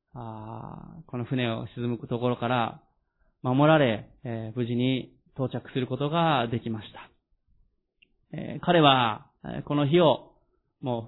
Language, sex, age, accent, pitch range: Japanese, male, 20-39, native, 125-165 Hz